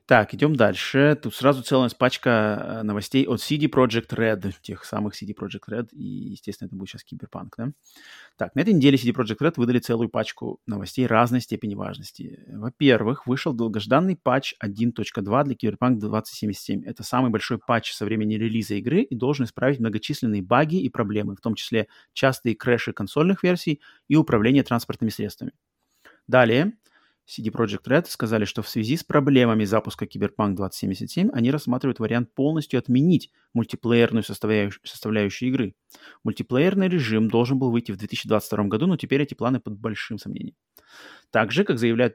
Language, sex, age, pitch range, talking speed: Russian, male, 30-49, 110-135 Hz, 160 wpm